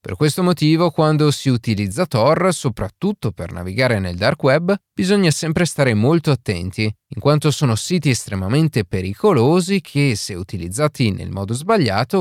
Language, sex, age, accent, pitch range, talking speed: Italian, male, 30-49, native, 110-155 Hz, 145 wpm